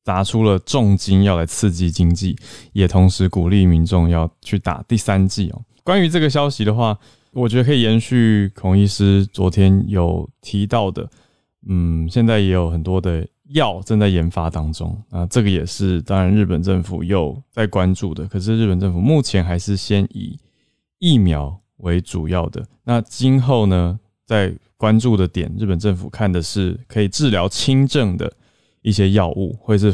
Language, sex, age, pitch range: Chinese, male, 20-39, 90-115 Hz